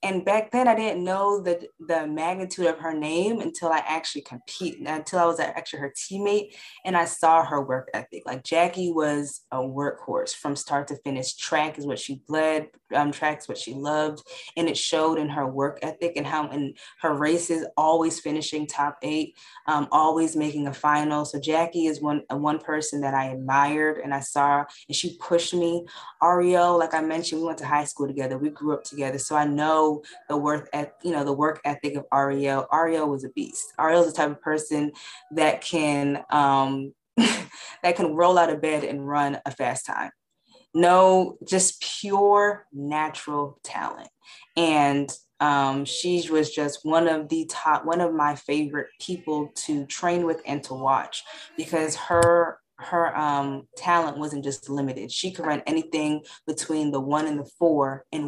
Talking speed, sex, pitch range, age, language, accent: 185 wpm, female, 145-170 Hz, 20-39, English, American